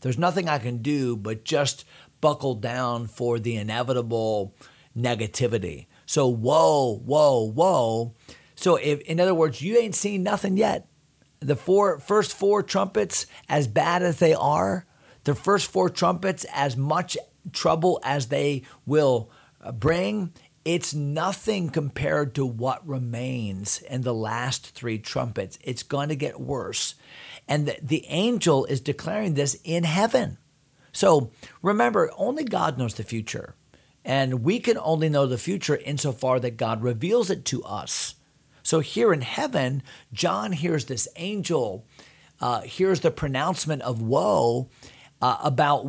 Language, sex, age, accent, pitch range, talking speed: English, male, 40-59, American, 125-175 Hz, 145 wpm